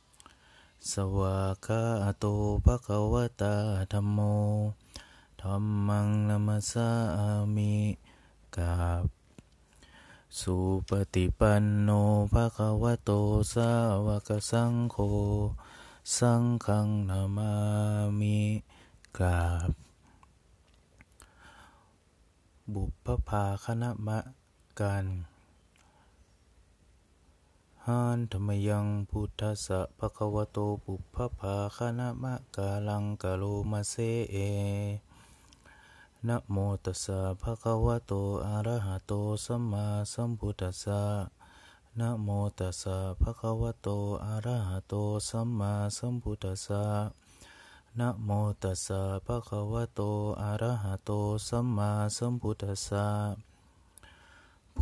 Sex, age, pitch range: male, 20-39, 95-110 Hz